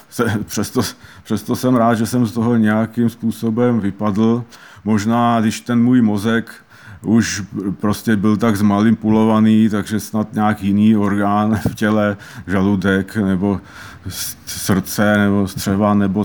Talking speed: 130 wpm